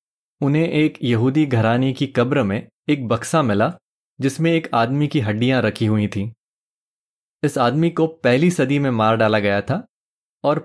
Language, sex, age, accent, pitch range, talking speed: Hindi, male, 20-39, native, 115-150 Hz, 165 wpm